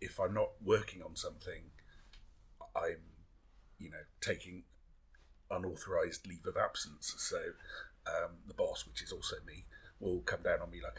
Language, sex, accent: English, male, British